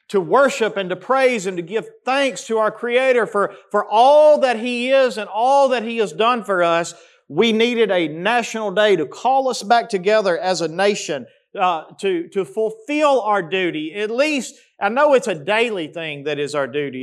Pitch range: 180-245 Hz